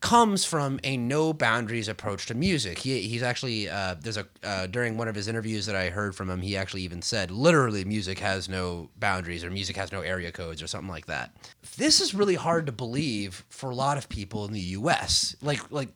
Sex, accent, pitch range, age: male, American, 105-160 Hz, 30-49